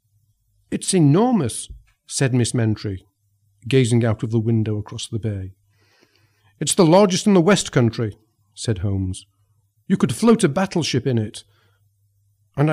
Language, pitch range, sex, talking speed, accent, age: English, 110-160 Hz, male, 140 wpm, British, 50-69